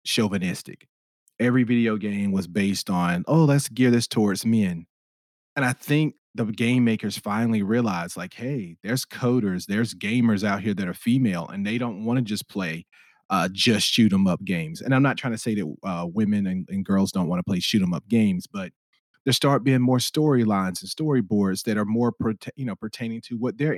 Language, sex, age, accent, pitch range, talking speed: English, male, 30-49, American, 100-130 Hz, 210 wpm